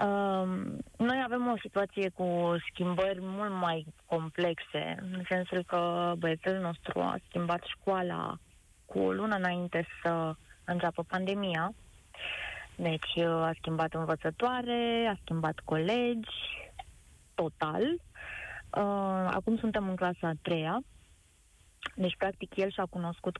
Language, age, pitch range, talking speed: Romanian, 20-39, 170-205 Hz, 110 wpm